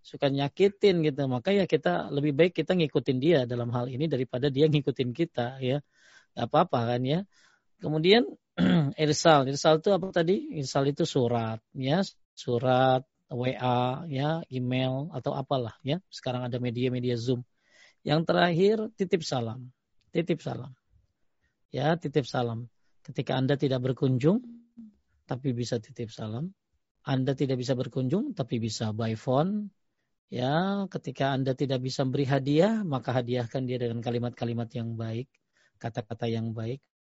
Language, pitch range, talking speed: Indonesian, 120-155 Hz, 140 wpm